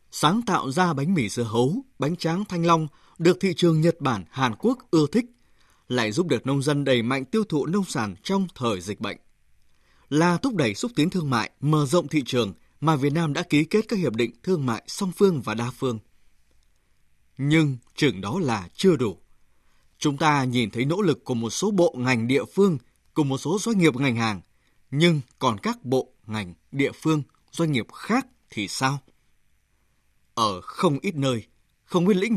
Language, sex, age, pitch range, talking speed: Vietnamese, male, 20-39, 120-180 Hz, 200 wpm